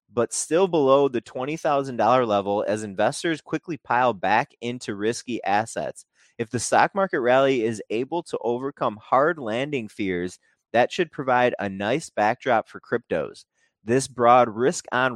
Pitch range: 100-130 Hz